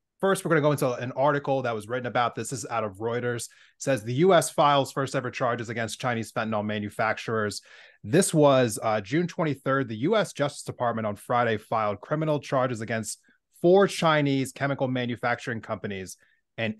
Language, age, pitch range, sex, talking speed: English, 30-49, 115-145 Hz, male, 180 wpm